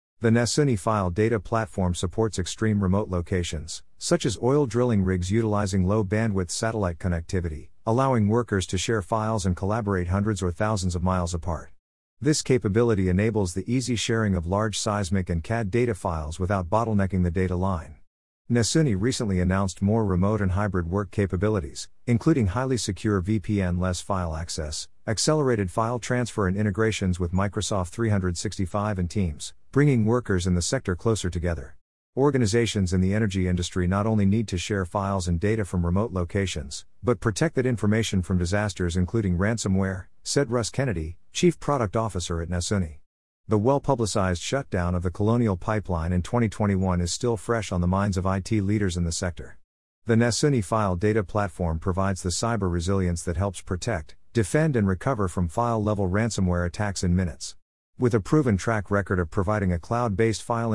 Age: 50-69